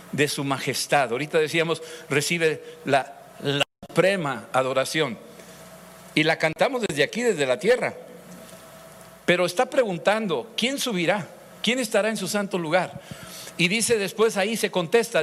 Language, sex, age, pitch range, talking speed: Spanish, male, 60-79, 160-220 Hz, 140 wpm